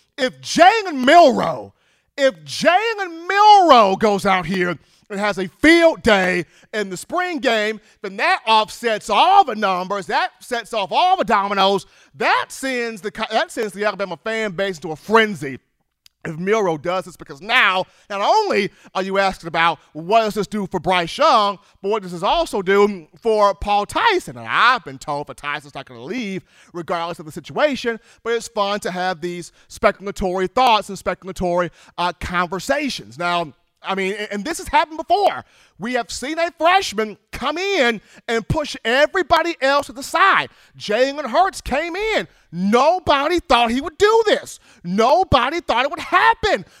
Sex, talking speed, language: male, 170 wpm, English